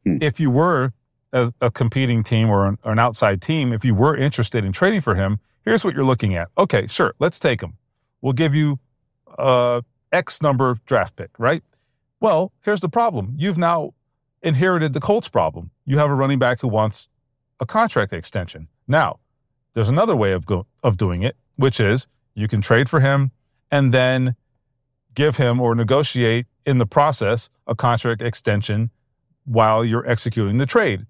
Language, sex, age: English, male, 40-59